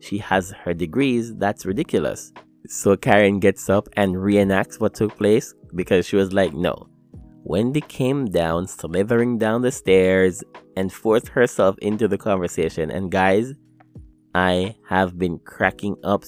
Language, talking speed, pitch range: English, 150 wpm, 90-105 Hz